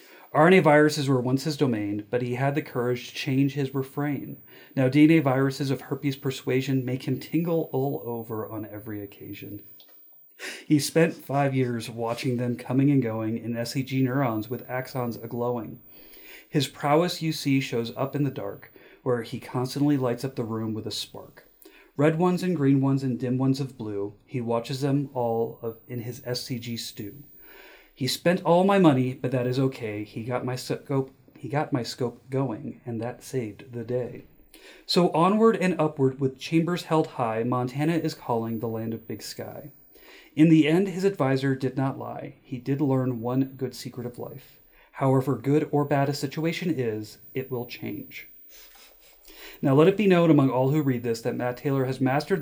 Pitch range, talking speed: 120-145 Hz, 185 wpm